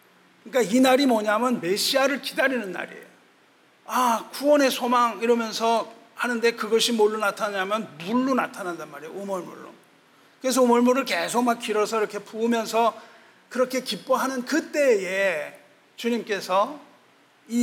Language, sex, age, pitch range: Korean, male, 40-59, 195-250 Hz